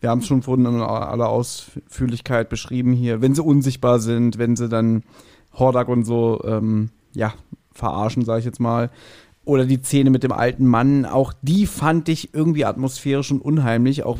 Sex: male